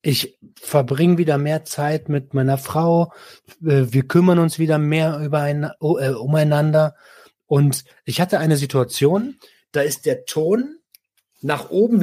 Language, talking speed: German, 130 wpm